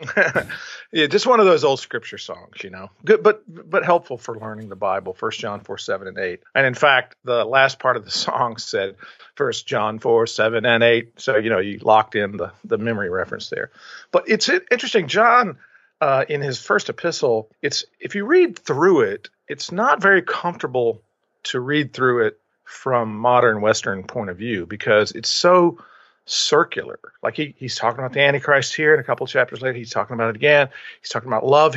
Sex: male